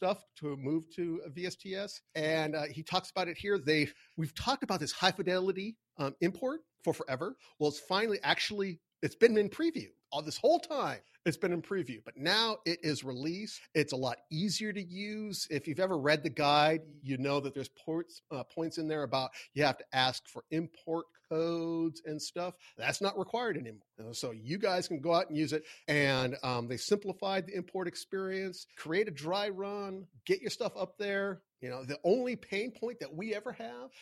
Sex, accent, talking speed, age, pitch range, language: male, American, 200 wpm, 40-59, 145-195 Hz, English